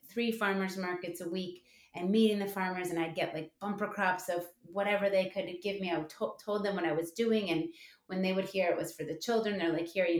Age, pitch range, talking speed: 30-49, 170-195 Hz, 245 wpm